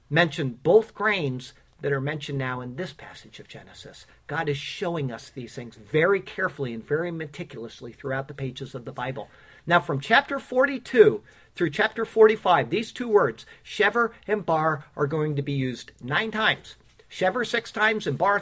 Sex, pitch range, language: male, 135-185 Hz, English